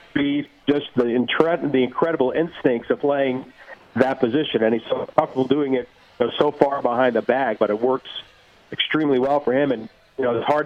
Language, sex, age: English, male, 50-69